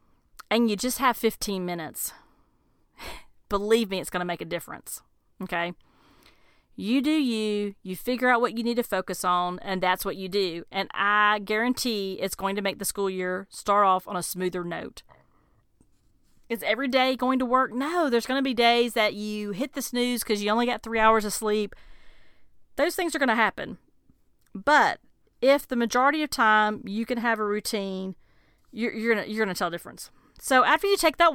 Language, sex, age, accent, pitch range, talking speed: English, female, 40-59, American, 195-245 Hz, 200 wpm